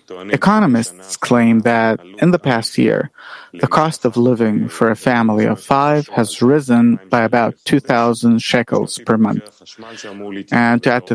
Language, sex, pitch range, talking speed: English, male, 115-135 Hz, 150 wpm